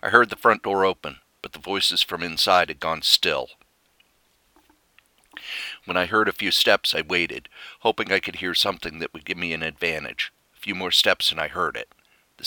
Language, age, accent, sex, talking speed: English, 50-69, American, male, 200 wpm